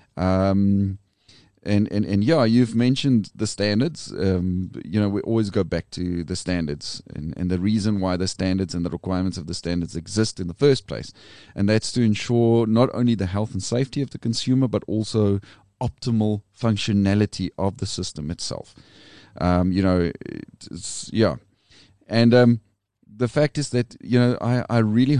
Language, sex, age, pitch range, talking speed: English, male, 30-49, 95-120 Hz, 175 wpm